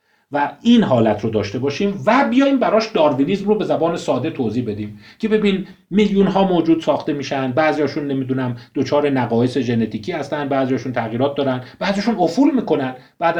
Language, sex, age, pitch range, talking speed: Persian, male, 40-59, 115-170 Hz, 160 wpm